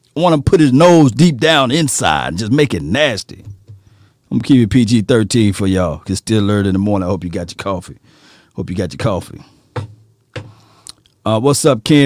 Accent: American